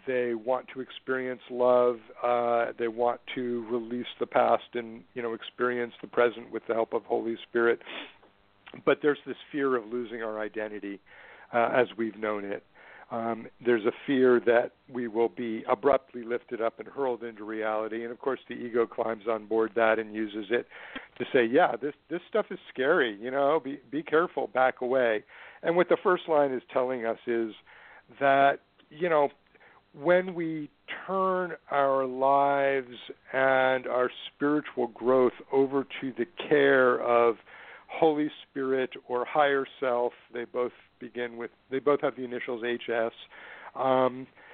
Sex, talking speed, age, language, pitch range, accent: male, 165 wpm, 50-69, English, 120-145 Hz, American